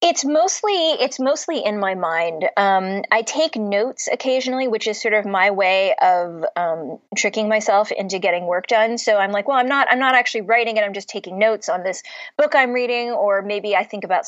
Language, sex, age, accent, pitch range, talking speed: English, female, 20-39, American, 185-230 Hz, 215 wpm